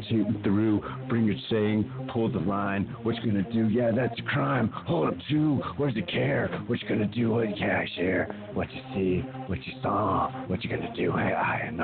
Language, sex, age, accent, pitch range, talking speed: English, male, 50-69, American, 95-125 Hz, 225 wpm